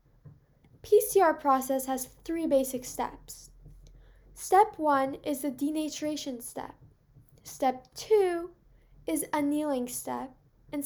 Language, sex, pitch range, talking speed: English, female, 275-345 Hz, 105 wpm